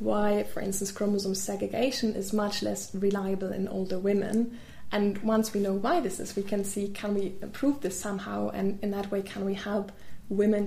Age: 20-39